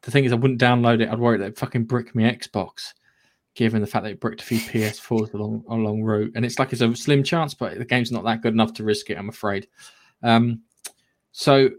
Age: 20-39